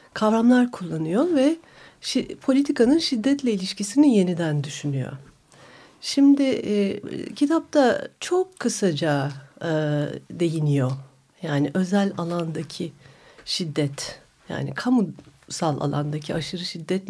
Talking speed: 90 wpm